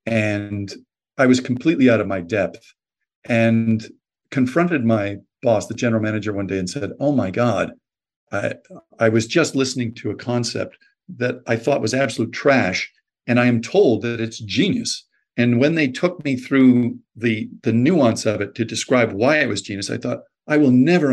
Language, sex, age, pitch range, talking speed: English, male, 50-69, 115-150 Hz, 185 wpm